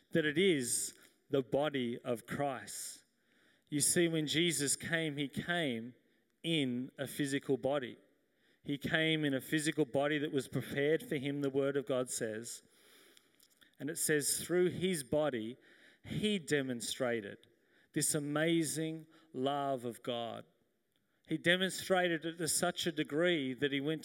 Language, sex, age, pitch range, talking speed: English, male, 40-59, 135-160 Hz, 140 wpm